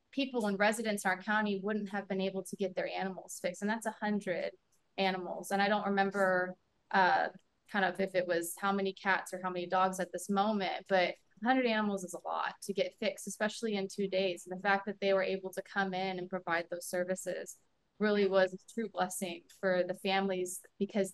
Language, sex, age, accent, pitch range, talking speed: English, female, 20-39, American, 185-205 Hz, 215 wpm